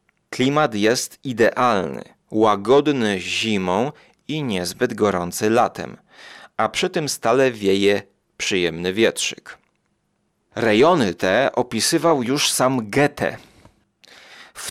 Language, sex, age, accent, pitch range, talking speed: Polish, male, 30-49, native, 100-130 Hz, 95 wpm